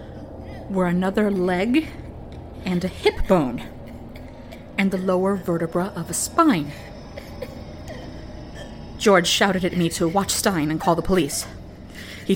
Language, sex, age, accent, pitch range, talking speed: English, female, 30-49, American, 160-205 Hz, 125 wpm